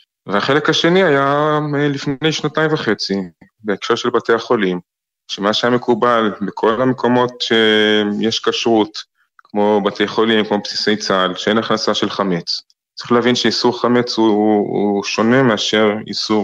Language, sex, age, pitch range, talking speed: Hebrew, male, 20-39, 100-120 Hz, 130 wpm